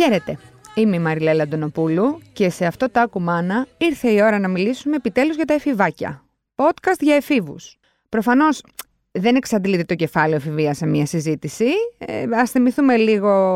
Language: Greek